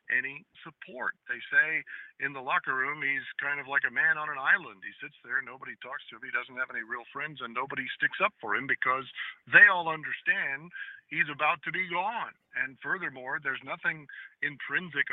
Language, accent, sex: English, American, male